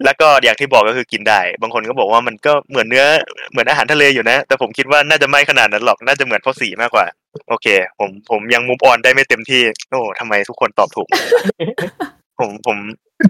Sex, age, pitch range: male, 20-39, 130-175 Hz